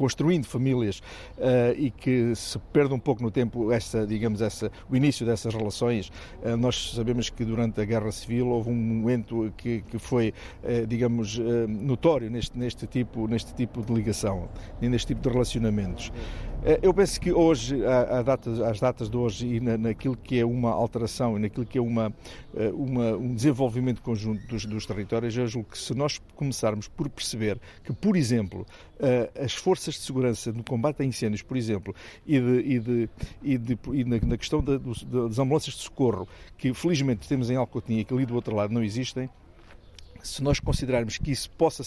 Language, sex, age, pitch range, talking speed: Portuguese, male, 50-69, 110-130 Hz, 190 wpm